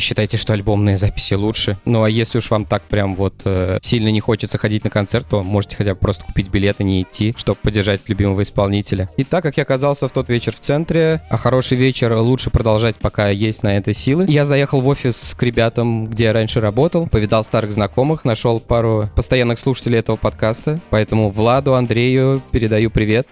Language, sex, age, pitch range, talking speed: Russian, male, 20-39, 110-130 Hz, 200 wpm